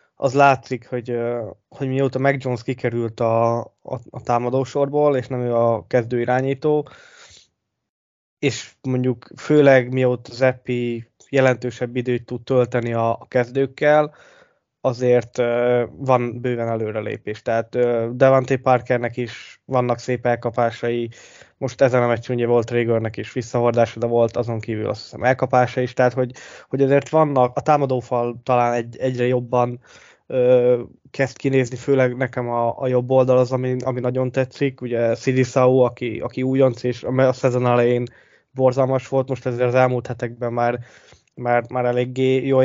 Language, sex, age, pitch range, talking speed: Hungarian, male, 20-39, 120-130 Hz, 150 wpm